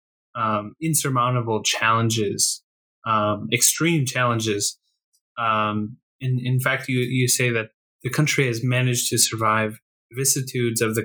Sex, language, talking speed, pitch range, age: male, English, 130 wpm, 115-130 Hz, 20-39